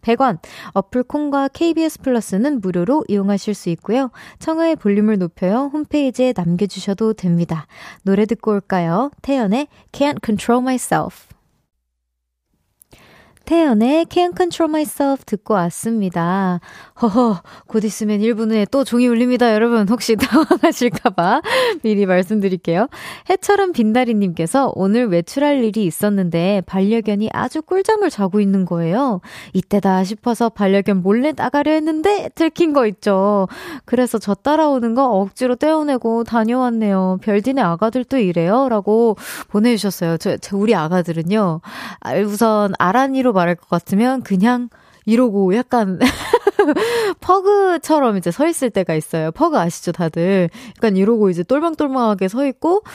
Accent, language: native, Korean